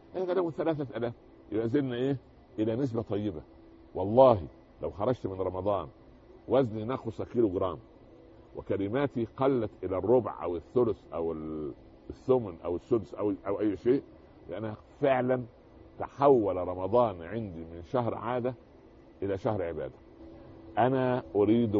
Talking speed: 115 wpm